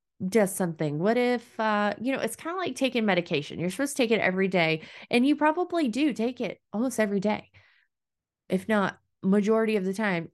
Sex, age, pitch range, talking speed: female, 30-49, 190-245 Hz, 205 wpm